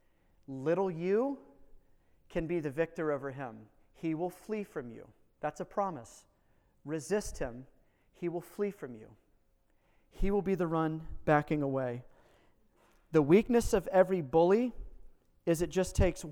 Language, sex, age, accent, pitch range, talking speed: English, male, 30-49, American, 130-165 Hz, 145 wpm